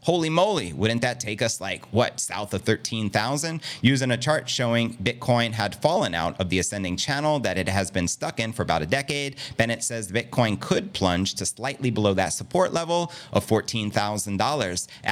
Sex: male